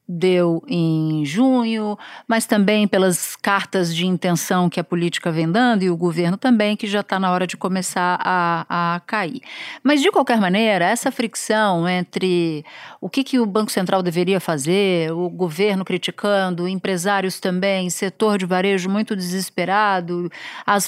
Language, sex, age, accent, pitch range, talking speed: Portuguese, female, 50-69, Brazilian, 180-240 Hz, 155 wpm